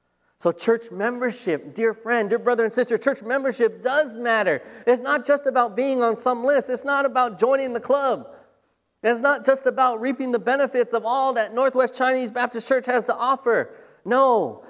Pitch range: 140-230 Hz